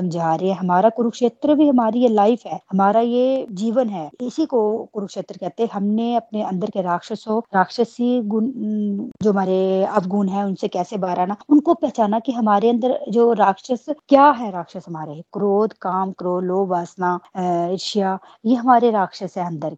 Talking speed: 165 wpm